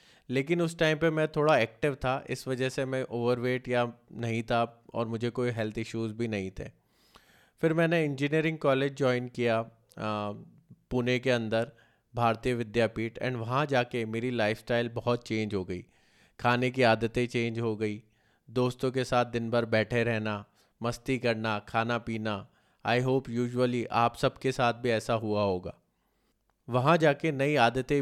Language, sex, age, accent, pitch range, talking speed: Hindi, male, 20-39, native, 110-125 Hz, 160 wpm